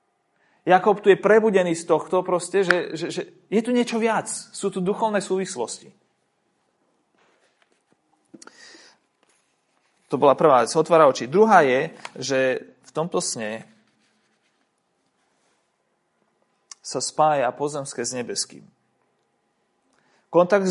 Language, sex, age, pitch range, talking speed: Slovak, male, 30-49, 135-170 Hz, 100 wpm